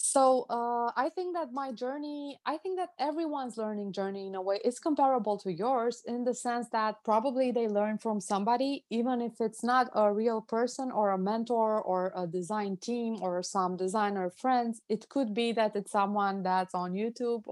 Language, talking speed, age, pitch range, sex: English, 190 wpm, 20-39, 185-235 Hz, female